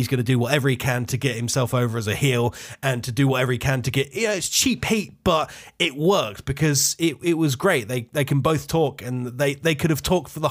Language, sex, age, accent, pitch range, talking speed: English, male, 20-39, British, 125-150 Hz, 270 wpm